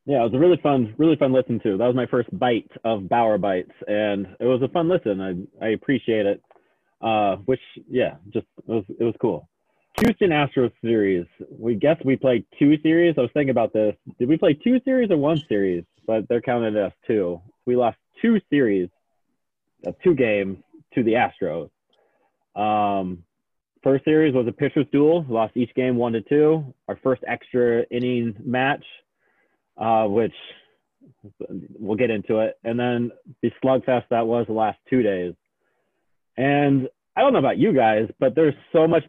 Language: English